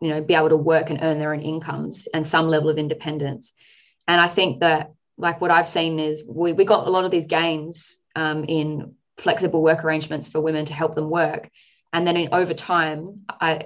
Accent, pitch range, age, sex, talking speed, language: Australian, 155-175 Hz, 20-39, female, 220 wpm, English